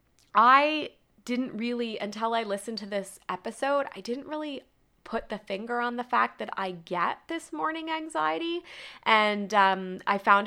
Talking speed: 160 wpm